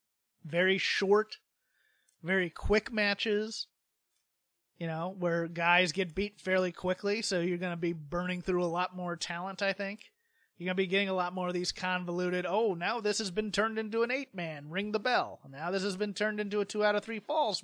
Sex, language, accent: male, English, American